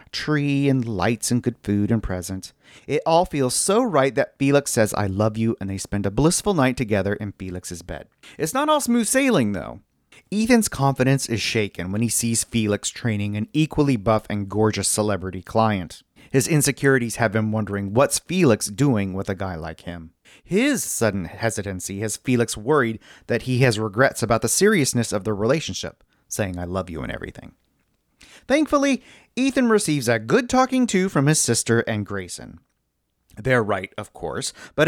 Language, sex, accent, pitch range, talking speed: English, male, American, 105-155 Hz, 175 wpm